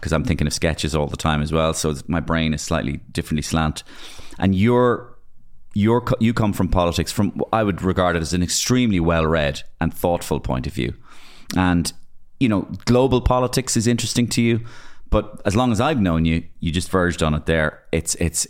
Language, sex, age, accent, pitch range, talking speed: English, male, 30-49, Irish, 75-90 Hz, 205 wpm